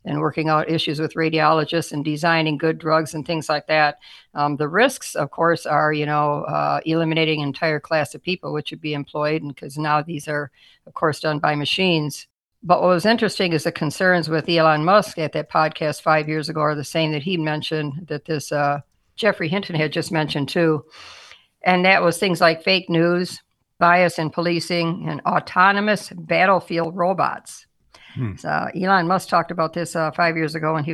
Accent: American